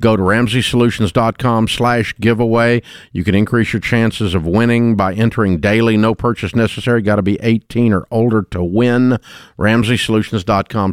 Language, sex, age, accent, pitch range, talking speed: English, male, 50-69, American, 95-120 Hz, 155 wpm